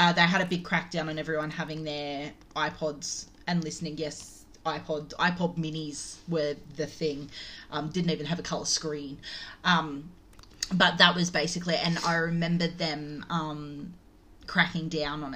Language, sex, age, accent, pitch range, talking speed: English, female, 30-49, Australian, 150-175 Hz, 155 wpm